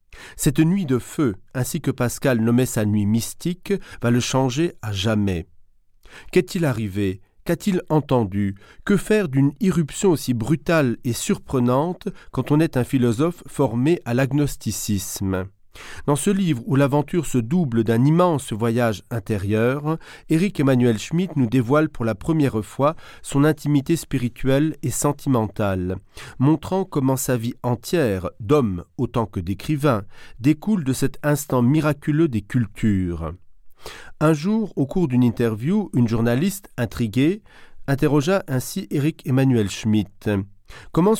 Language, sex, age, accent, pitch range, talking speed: French, male, 40-59, French, 110-155 Hz, 130 wpm